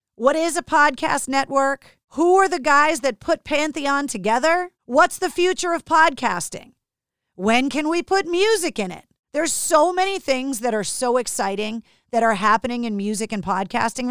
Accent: American